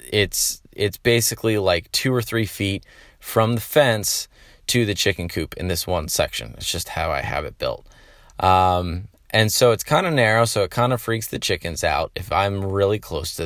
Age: 20-39